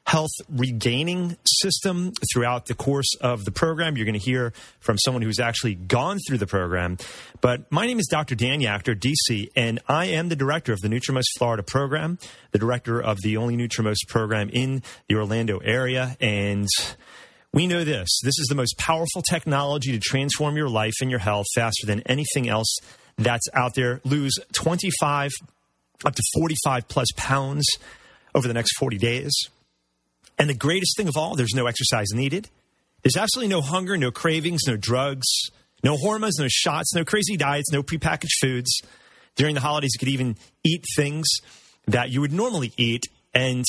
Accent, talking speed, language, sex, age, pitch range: American, 175 wpm, English, male, 30-49, 115-150 Hz